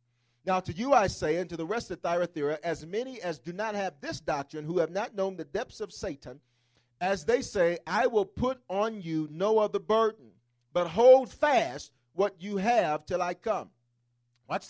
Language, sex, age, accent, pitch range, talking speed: English, male, 40-59, American, 120-185 Hz, 195 wpm